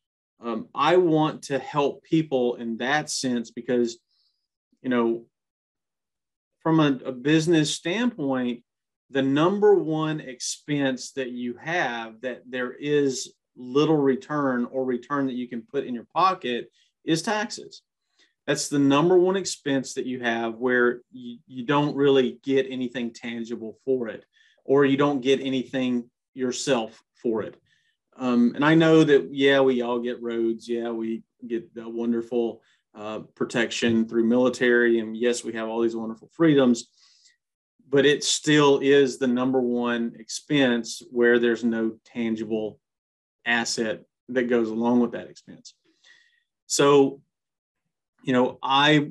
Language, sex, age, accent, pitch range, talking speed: English, male, 40-59, American, 120-145 Hz, 140 wpm